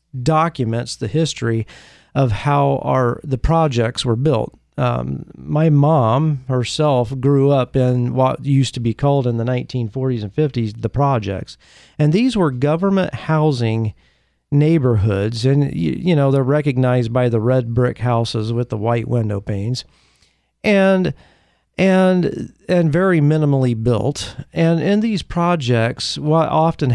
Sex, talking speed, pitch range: male, 140 wpm, 120-155 Hz